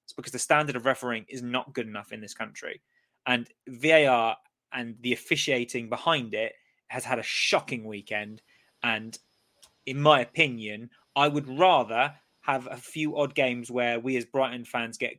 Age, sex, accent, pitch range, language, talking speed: 20-39, male, British, 120-145 Hz, English, 165 wpm